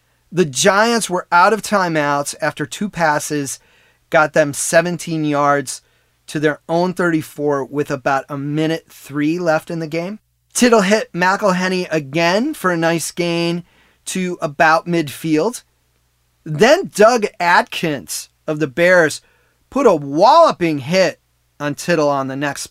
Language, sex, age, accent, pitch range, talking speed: English, male, 30-49, American, 150-210 Hz, 135 wpm